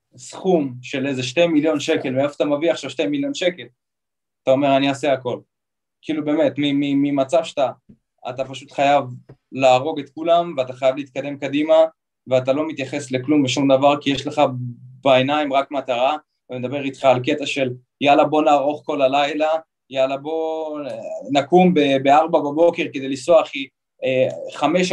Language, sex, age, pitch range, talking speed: Hebrew, male, 20-39, 130-165 Hz, 155 wpm